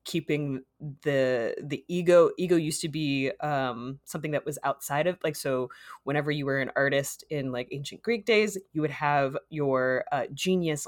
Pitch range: 140-200 Hz